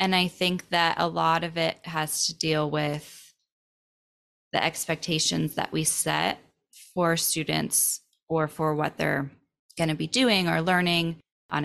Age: 20-39